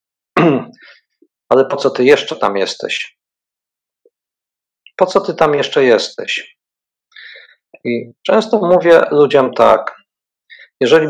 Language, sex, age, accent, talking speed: Polish, male, 50-69, native, 105 wpm